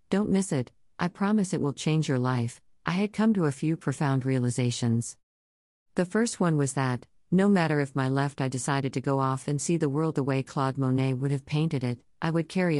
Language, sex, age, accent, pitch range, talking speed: English, female, 50-69, American, 130-165 Hz, 225 wpm